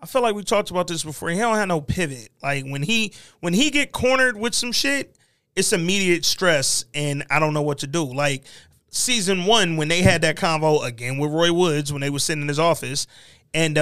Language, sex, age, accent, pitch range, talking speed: English, male, 20-39, American, 140-180 Hz, 230 wpm